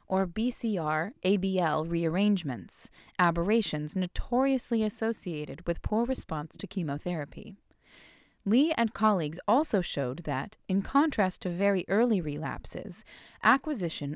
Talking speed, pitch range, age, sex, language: 100 wpm, 175-235 Hz, 20-39, female, English